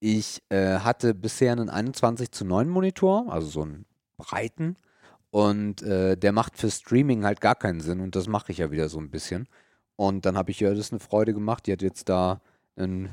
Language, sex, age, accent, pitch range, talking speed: German, male, 40-59, German, 95-120 Hz, 210 wpm